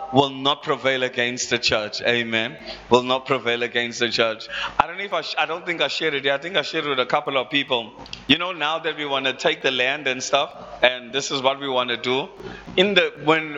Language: English